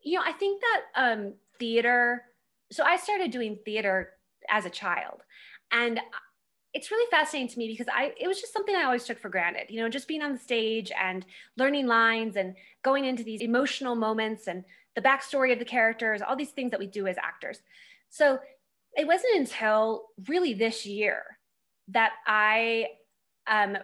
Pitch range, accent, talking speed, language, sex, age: 205-255 Hz, American, 180 wpm, English, female, 20-39